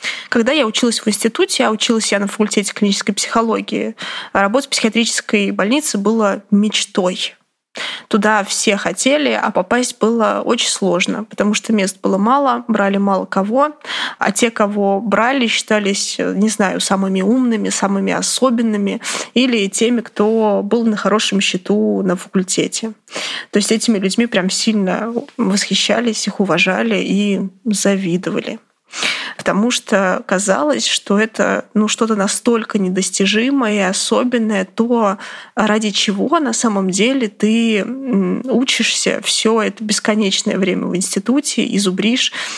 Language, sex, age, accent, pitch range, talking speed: Russian, female, 20-39, native, 200-240 Hz, 130 wpm